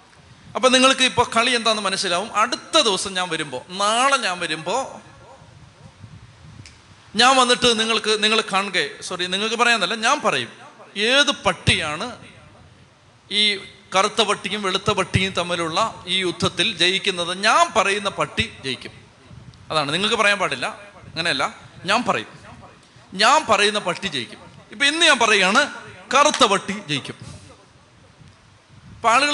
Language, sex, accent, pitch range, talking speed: Malayalam, male, native, 155-230 Hz, 115 wpm